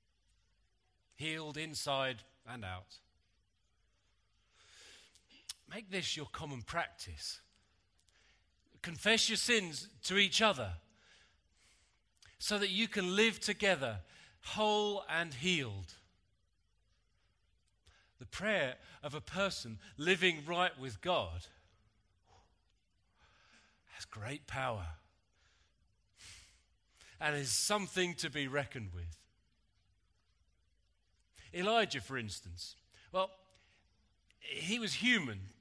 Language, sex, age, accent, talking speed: English, male, 40-59, British, 85 wpm